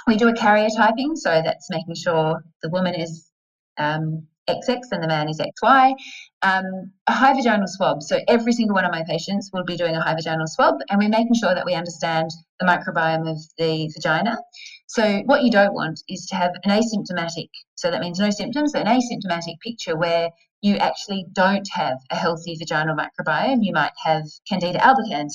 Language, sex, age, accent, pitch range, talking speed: English, female, 30-49, Australian, 165-215 Hz, 195 wpm